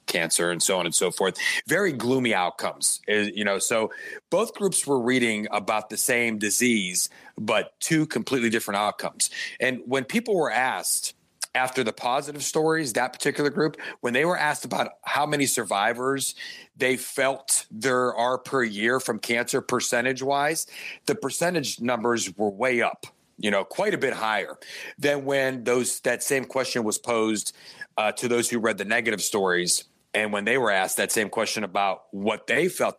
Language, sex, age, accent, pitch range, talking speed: English, male, 40-59, American, 110-135 Hz, 170 wpm